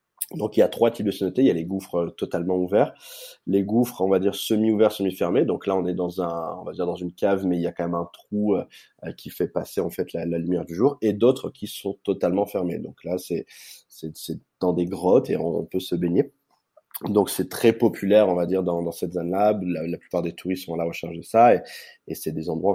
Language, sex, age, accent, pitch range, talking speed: French, male, 20-39, French, 90-105 Hz, 265 wpm